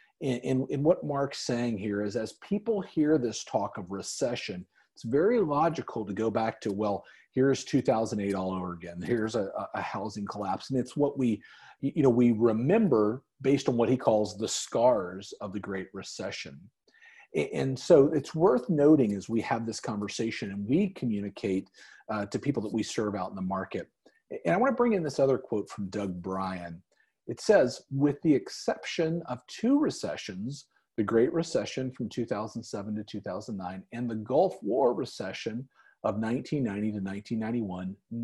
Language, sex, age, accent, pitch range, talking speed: English, male, 40-59, American, 105-140 Hz, 165 wpm